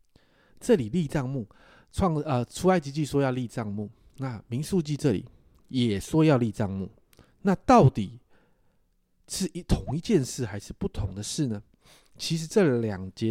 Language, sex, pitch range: Chinese, male, 110-165 Hz